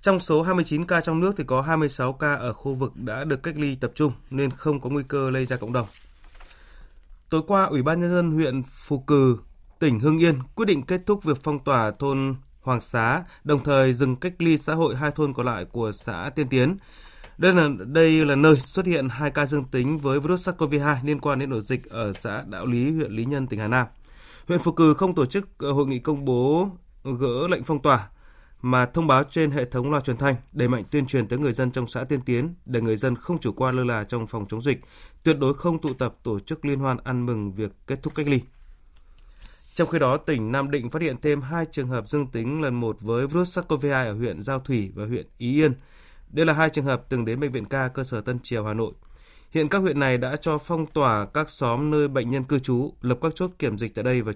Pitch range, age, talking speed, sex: 120-150 Hz, 20-39, 245 wpm, male